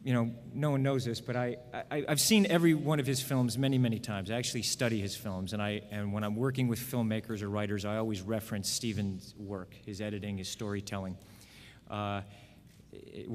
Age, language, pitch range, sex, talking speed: 40-59, English, 110-130 Hz, male, 200 wpm